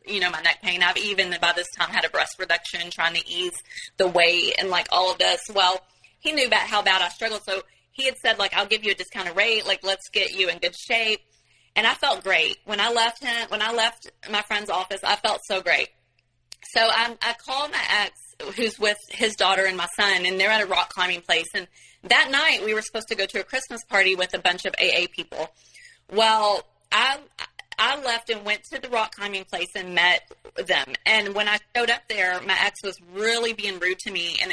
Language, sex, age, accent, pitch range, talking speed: English, female, 30-49, American, 180-225 Hz, 235 wpm